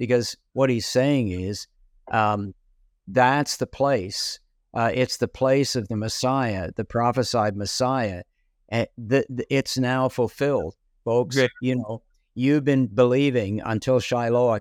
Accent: American